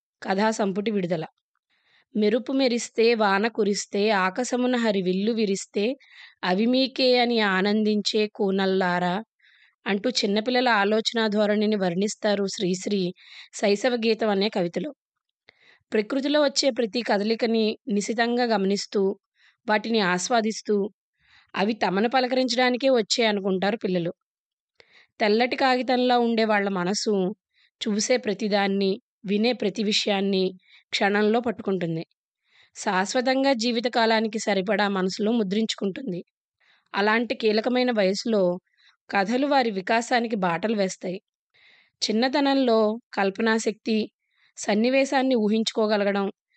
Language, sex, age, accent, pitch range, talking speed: Telugu, female, 20-39, native, 200-245 Hz, 85 wpm